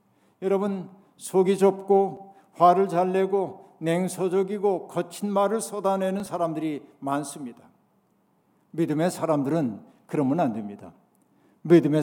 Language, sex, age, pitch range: Korean, male, 60-79, 160-200 Hz